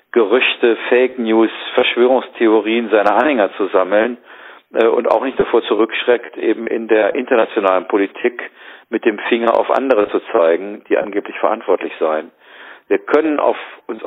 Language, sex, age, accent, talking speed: German, male, 50-69, German, 140 wpm